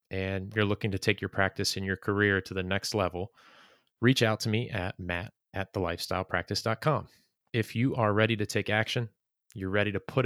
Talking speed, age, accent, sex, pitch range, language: 195 wpm, 30-49, American, male, 100-115 Hz, English